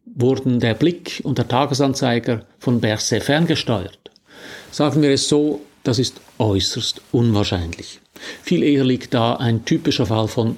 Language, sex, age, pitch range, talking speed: German, male, 50-69, 110-135 Hz, 140 wpm